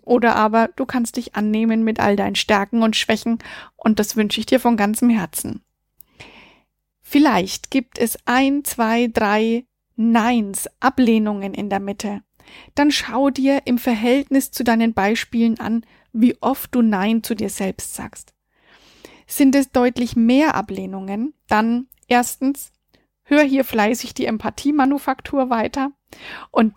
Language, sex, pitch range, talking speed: German, female, 215-265 Hz, 140 wpm